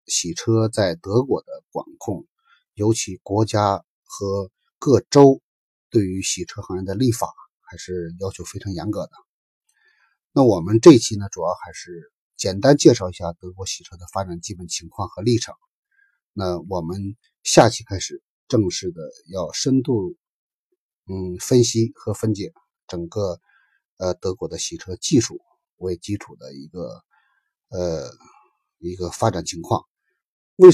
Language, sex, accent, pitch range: Chinese, male, native, 90-120 Hz